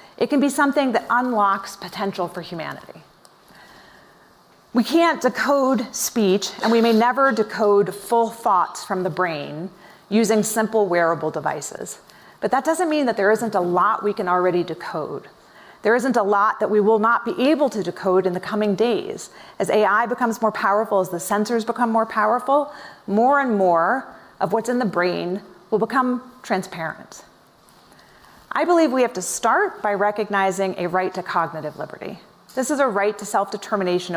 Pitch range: 190-250 Hz